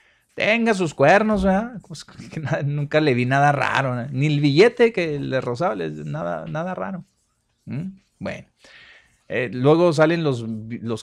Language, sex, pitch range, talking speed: Spanish, male, 125-165 Hz, 150 wpm